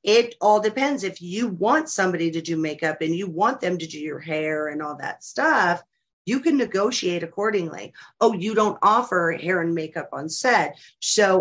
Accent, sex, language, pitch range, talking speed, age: American, female, English, 165-200 Hz, 190 wpm, 40-59